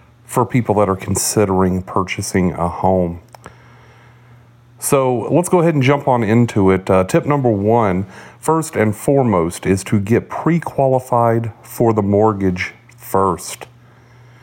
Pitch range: 100-120 Hz